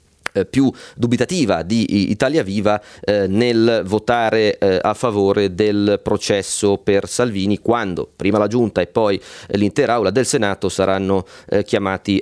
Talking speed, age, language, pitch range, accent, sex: 140 wpm, 30-49, Italian, 100-120 Hz, native, male